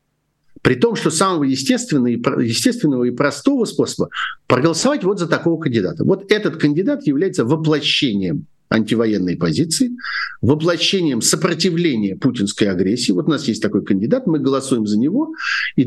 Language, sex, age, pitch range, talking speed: Russian, male, 50-69, 120-180 Hz, 130 wpm